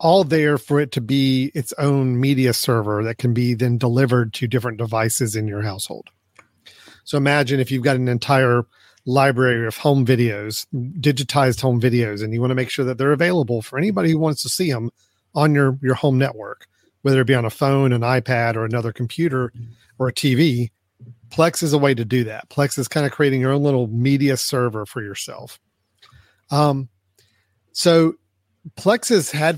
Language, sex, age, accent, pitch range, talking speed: English, male, 40-59, American, 120-145 Hz, 190 wpm